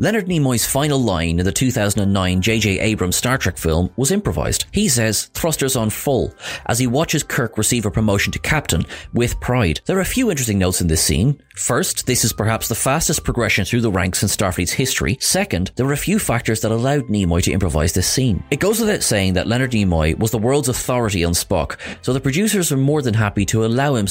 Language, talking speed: English, 220 wpm